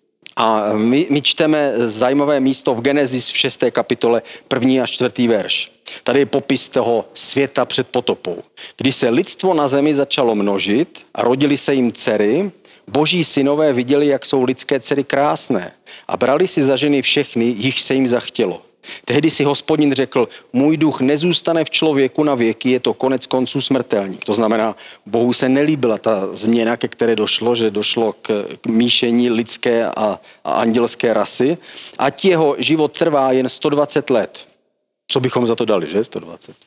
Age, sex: 40-59, male